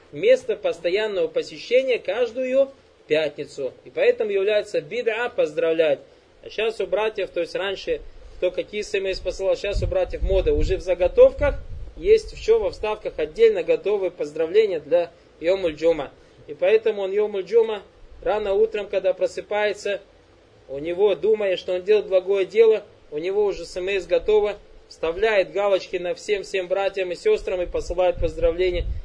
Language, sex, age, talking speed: Russian, male, 20-39, 145 wpm